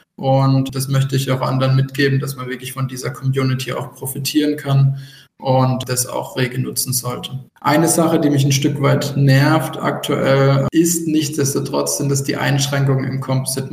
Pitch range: 130-140 Hz